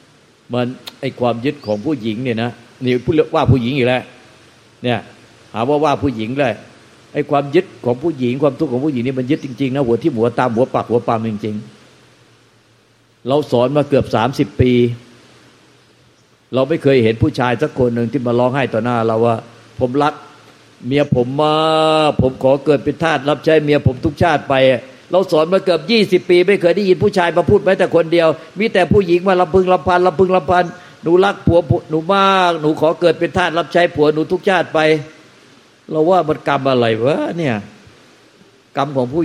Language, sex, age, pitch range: Thai, male, 60-79, 125-165 Hz